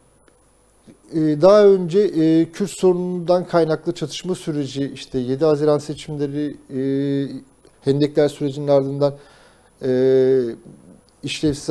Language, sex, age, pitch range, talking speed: Turkish, male, 50-69, 140-180 Hz, 75 wpm